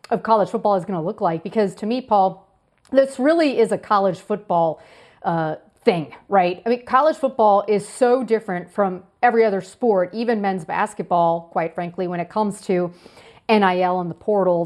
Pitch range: 175-210 Hz